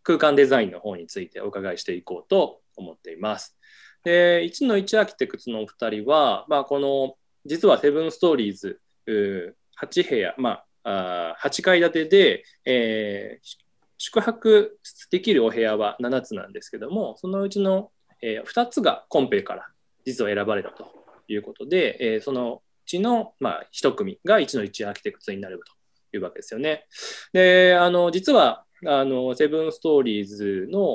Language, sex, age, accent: Japanese, male, 20-39, native